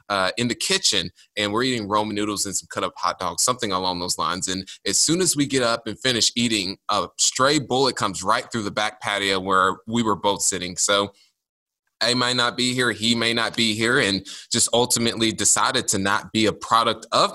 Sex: male